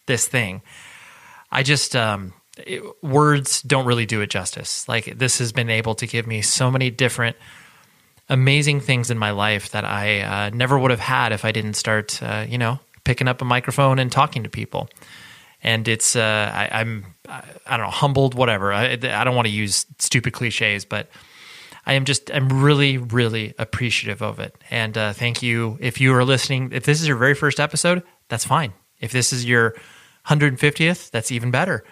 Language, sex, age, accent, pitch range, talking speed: English, male, 20-39, American, 110-135 Hz, 195 wpm